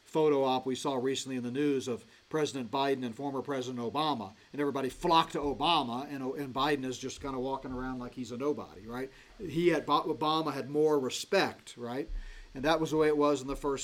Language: English